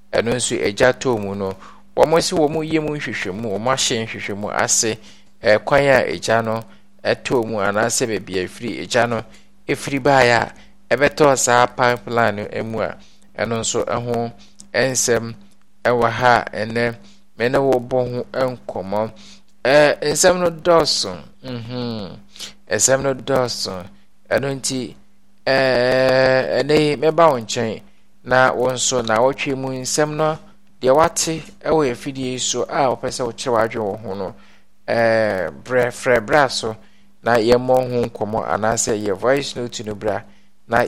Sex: male